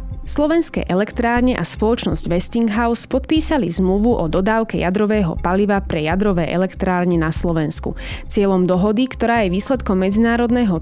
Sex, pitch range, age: female, 180-230 Hz, 20-39